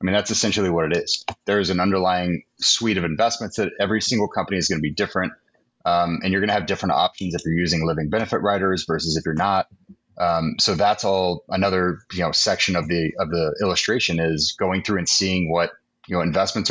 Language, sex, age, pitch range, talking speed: English, male, 30-49, 85-100 Hz, 225 wpm